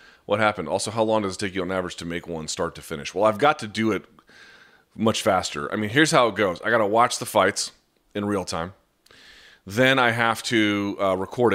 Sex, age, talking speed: male, 30-49, 235 wpm